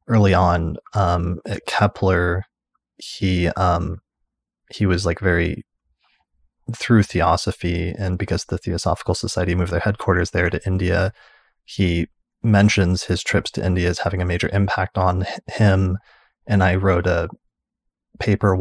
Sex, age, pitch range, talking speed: male, 20-39, 90-100 Hz, 135 wpm